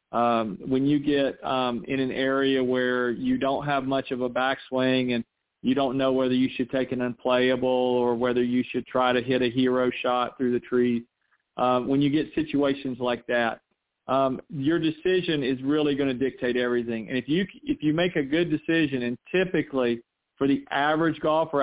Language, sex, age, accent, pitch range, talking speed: English, male, 40-59, American, 125-145 Hz, 195 wpm